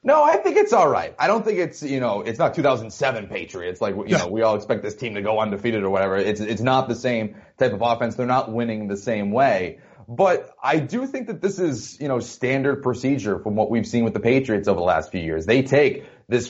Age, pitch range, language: 30-49, 115-140 Hz, English